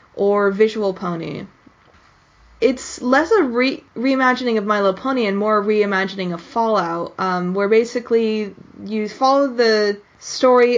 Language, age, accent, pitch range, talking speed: English, 20-39, American, 195-240 Hz, 135 wpm